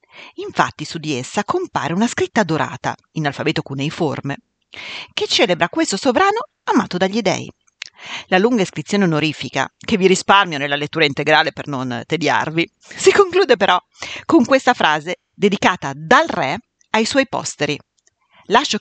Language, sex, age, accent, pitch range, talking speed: Italian, female, 40-59, native, 150-225 Hz, 140 wpm